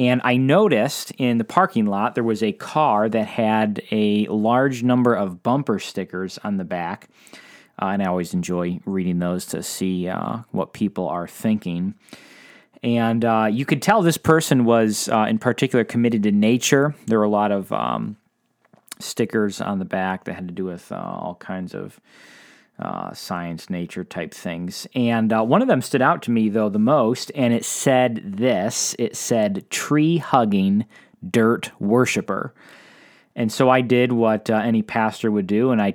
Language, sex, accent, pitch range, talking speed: English, male, American, 105-140 Hz, 180 wpm